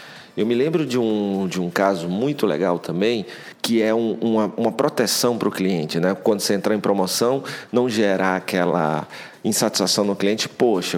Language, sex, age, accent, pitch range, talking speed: Portuguese, male, 40-59, Brazilian, 95-120 Hz, 165 wpm